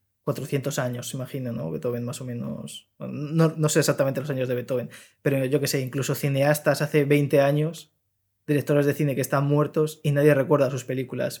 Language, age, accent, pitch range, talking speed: Spanish, 20-39, Spanish, 125-145 Hz, 195 wpm